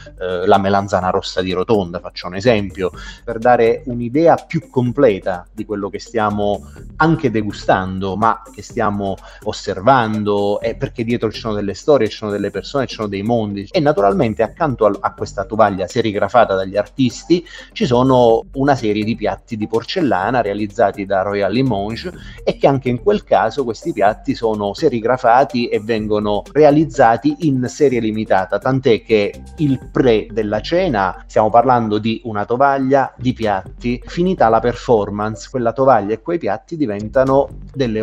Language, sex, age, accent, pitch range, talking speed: Italian, male, 30-49, native, 100-125 Hz, 155 wpm